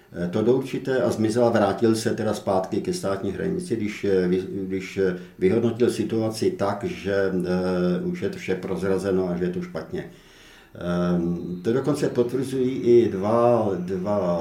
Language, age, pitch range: Czech, 50-69, 90-110 Hz